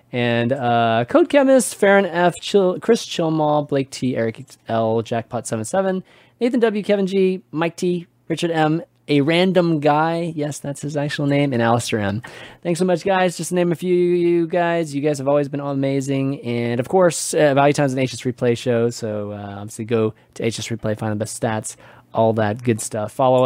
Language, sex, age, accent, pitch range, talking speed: English, male, 20-39, American, 115-165 Hz, 195 wpm